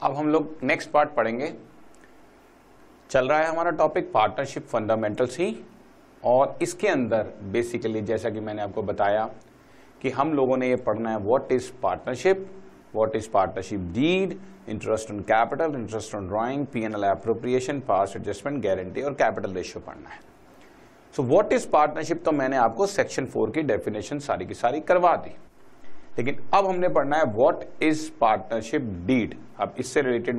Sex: male